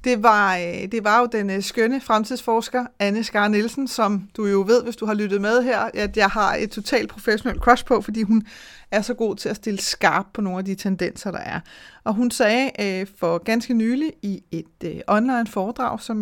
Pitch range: 195-235 Hz